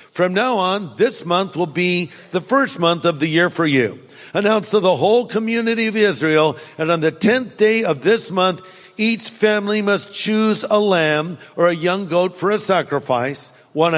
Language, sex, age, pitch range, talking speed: English, male, 50-69, 165-205 Hz, 190 wpm